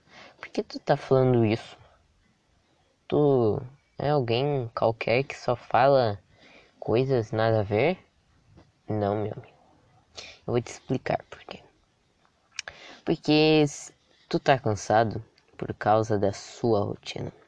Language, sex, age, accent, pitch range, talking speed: Portuguese, female, 10-29, Brazilian, 105-135 Hz, 120 wpm